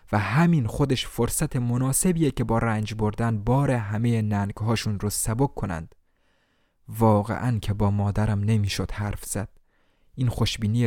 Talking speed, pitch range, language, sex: 130 wpm, 100-120 Hz, Persian, male